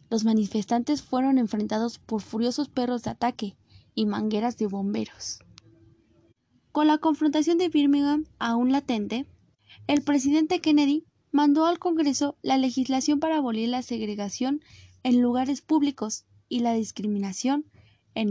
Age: 20-39